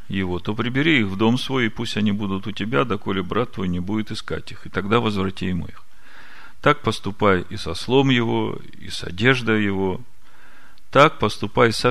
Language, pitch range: Russian, 95-115 Hz